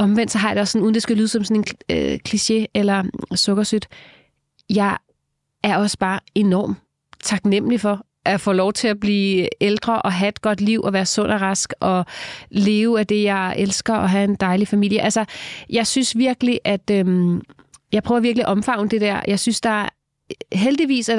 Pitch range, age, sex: 185-220 Hz, 30-49, female